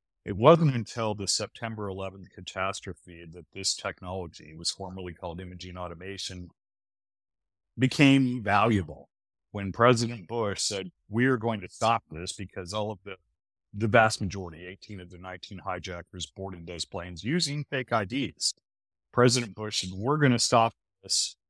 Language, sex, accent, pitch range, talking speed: English, male, American, 90-110 Hz, 145 wpm